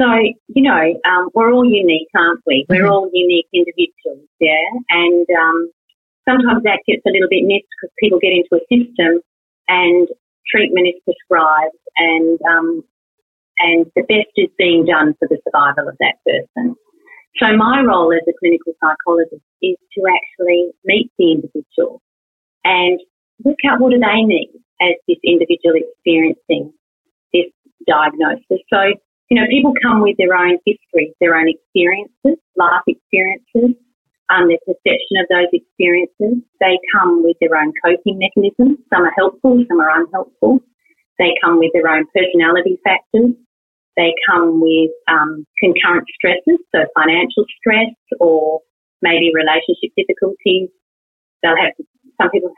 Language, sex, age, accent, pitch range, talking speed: English, female, 30-49, Australian, 170-245 Hz, 150 wpm